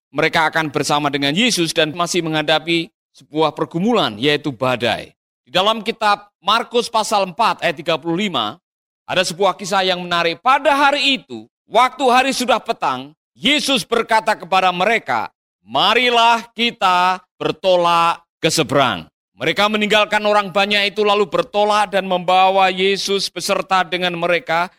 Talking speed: 130 wpm